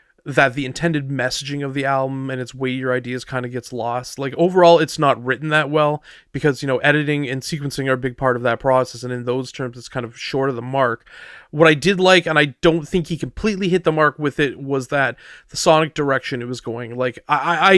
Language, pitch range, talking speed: English, 130-155 Hz, 245 wpm